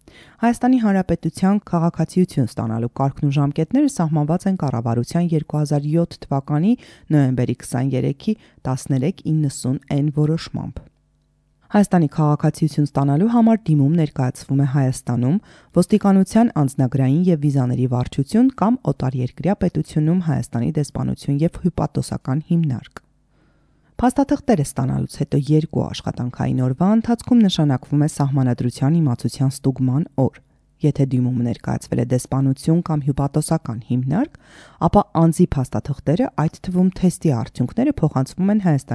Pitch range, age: 130-180 Hz, 30-49